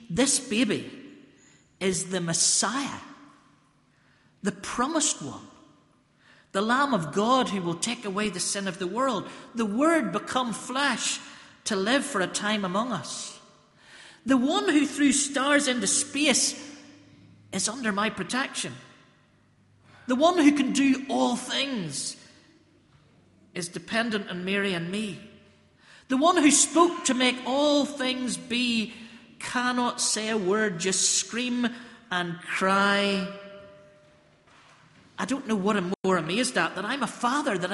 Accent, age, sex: British, 50-69, male